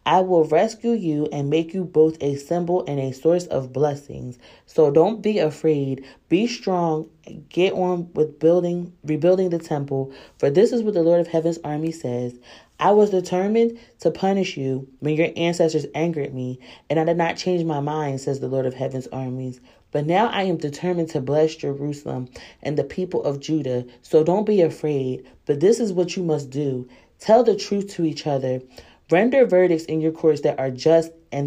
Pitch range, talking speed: 140-175 Hz, 195 wpm